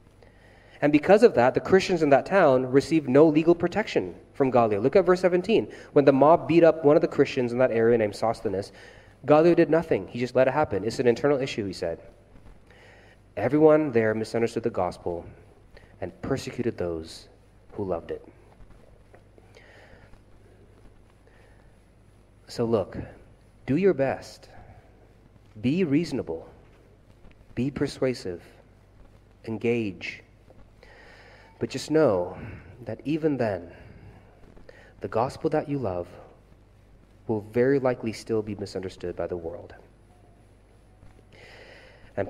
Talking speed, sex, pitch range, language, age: 125 wpm, male, 100-130 Hz, English, 30-49